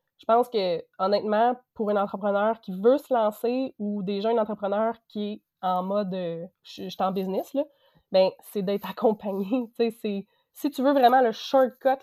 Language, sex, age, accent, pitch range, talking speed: French, female, 20-39, Canadian, 200-230 Hz, 175 wpm